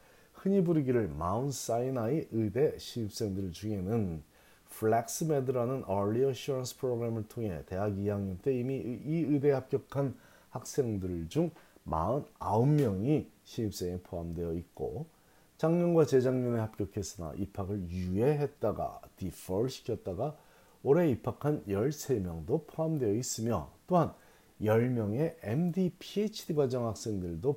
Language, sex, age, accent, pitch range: Korean, male, 40-59, native, 100-145 Hz